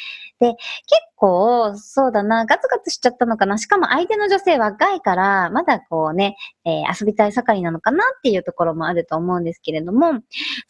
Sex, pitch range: male, 185-310 Hz